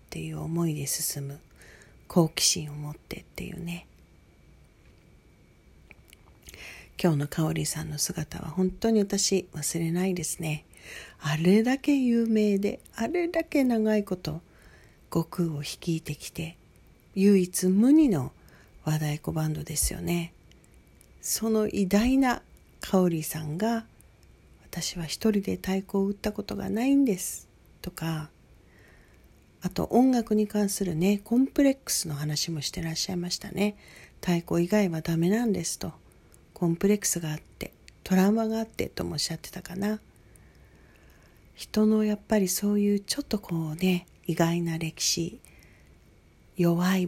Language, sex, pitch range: Japanese, female, 155-205 Hz